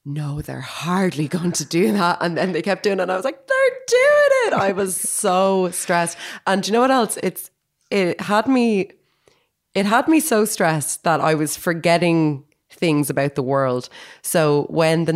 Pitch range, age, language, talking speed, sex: 155-225 Hz, 20-39, English, 200 wpm, female